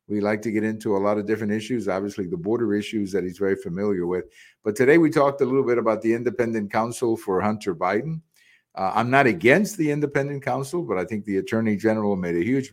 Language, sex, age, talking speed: English, male, 50-69, 230 wpm